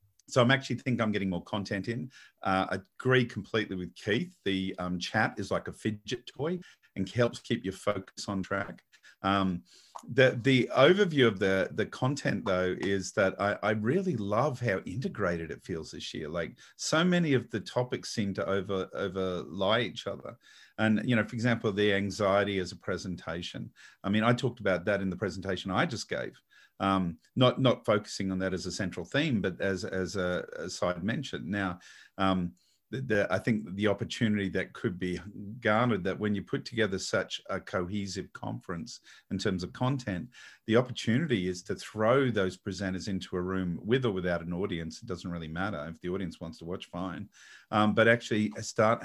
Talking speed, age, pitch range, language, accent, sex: 195 wpm, 50-69, 95-115 Hz, English, Australian, male